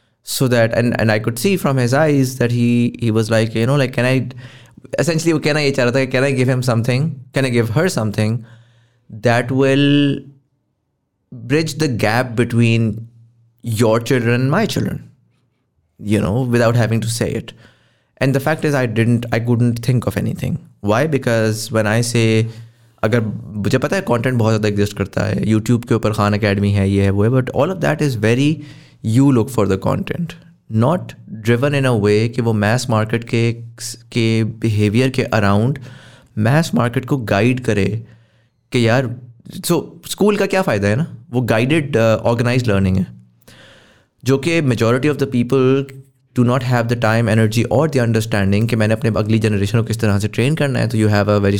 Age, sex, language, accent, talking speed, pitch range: 20-39, male, English, Indian, 145 wpm, 110-130 Hz